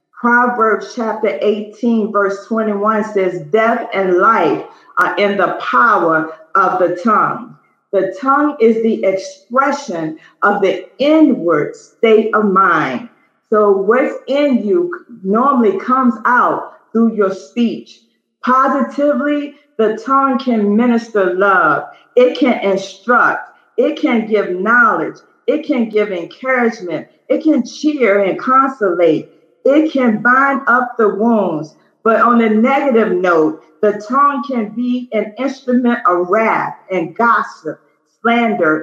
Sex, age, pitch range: female, 40-59, 195-260 Hz